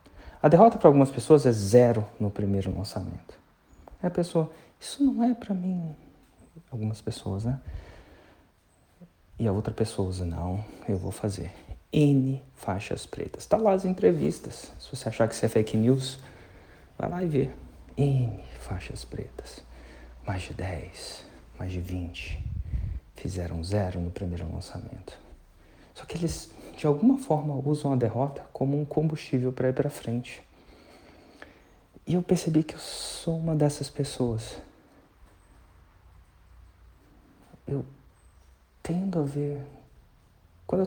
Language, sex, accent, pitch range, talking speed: Portuguese, male, Brazilian, 85-140 Hz, 135 wpm